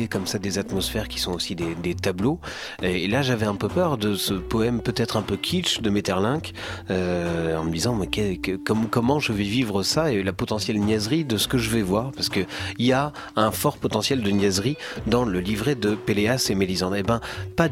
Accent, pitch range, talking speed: French, 95-130 Hz, 225 wpm